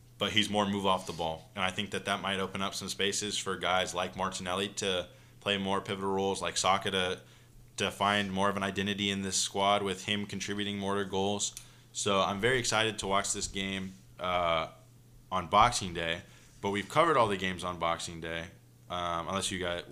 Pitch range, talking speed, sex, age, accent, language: 90-110 Hz, 200 wpm, male, 20-39, American, English